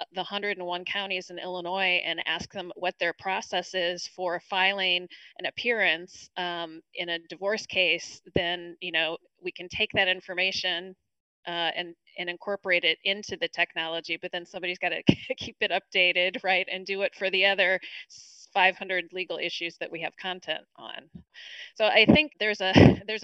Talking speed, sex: 165 wpm, female